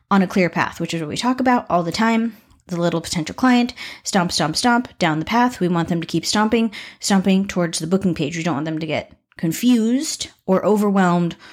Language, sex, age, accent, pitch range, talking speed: English, female, 30-49, American, 170-215 Hz, 225 wpm